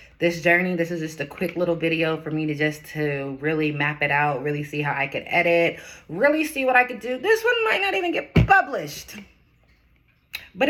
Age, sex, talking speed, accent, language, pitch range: 20-39, female, 215 wpm, American, English, 155-250 Hz